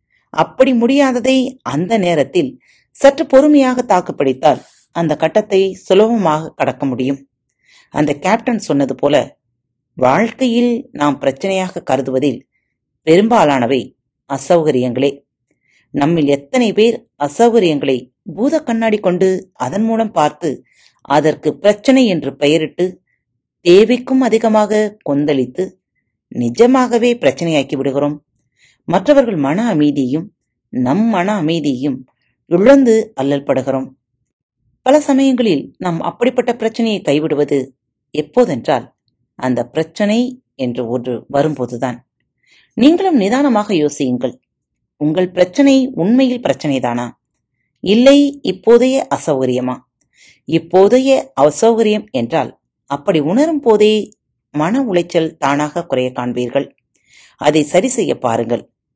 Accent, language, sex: native, Tamil, female